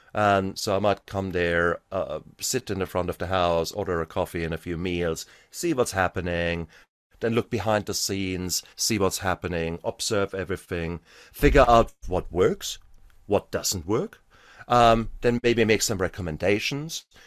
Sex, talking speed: male, 165 wpm